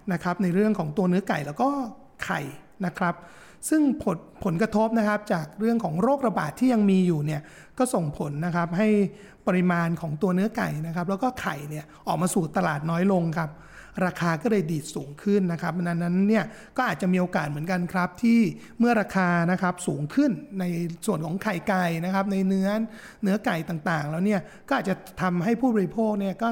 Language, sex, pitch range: Thai, male, 175-215 Hz